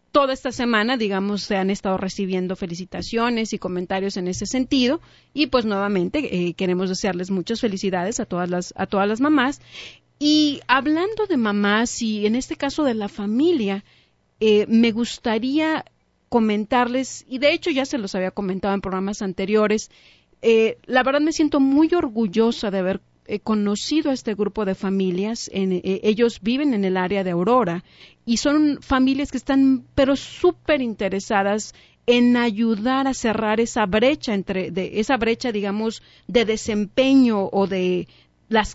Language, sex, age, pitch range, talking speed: English, female, 40-59, 195-260 Hz, 165 wpm